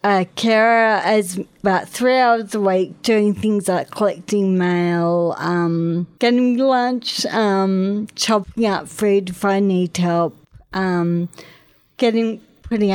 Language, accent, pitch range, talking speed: English, Australian, 175-205 Hz, 115 wpm